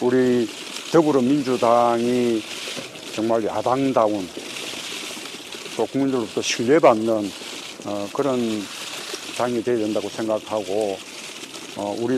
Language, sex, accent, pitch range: Korean, male, native, 105-125 Hz